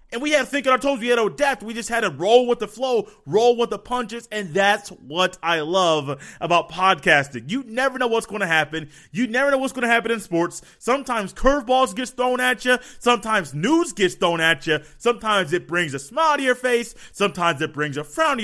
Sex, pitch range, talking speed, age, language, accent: male, 185-250 Hz, 240 wpm, 30-49, English, American